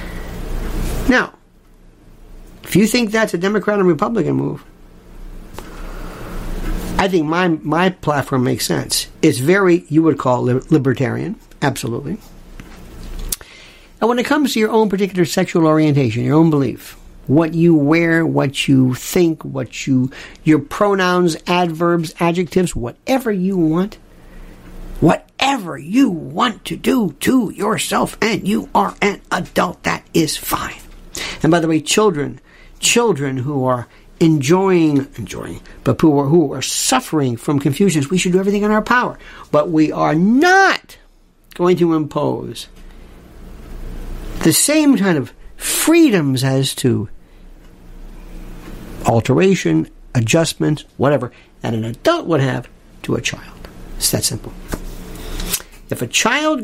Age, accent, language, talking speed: 60-79, American, English, 130 wpm